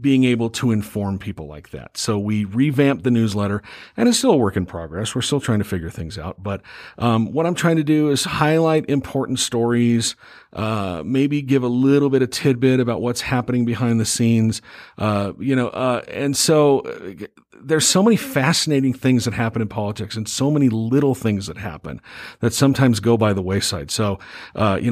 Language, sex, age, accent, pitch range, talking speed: English, male, 50-69, American, 105-130 Hz, 200 wpm